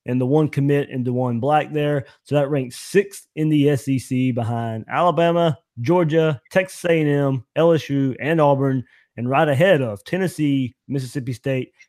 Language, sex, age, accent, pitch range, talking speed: English, male, 20-39, American, 125-155 Hz, 155 wpm